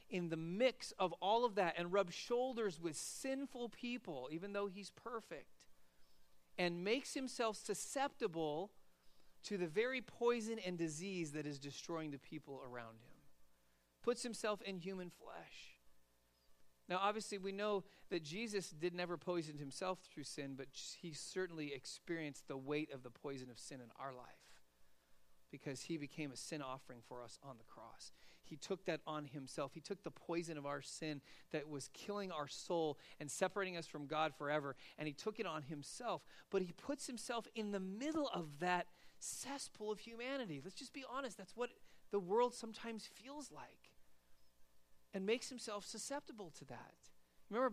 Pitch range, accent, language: 140-205 Hz, American, English